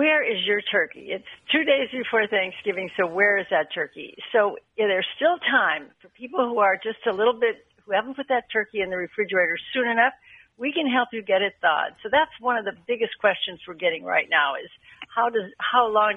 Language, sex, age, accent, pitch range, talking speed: English, female, 60-79, American, 195-255 Hz, 215 wpm